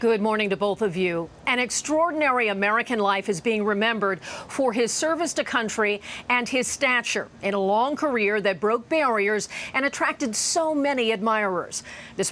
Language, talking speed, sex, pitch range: English, 165 wpm, female, 200-265 Hz